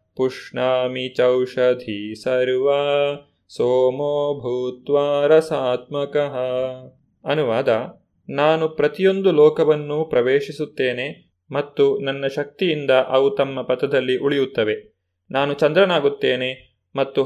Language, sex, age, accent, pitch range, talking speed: Kannada, male, 30-49, native, 130-170 Hz, 65 wpm